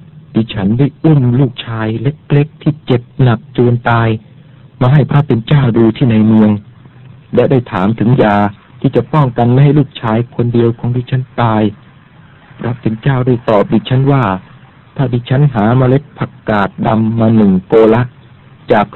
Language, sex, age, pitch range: Thai, male, 60-79, 110-140 Hz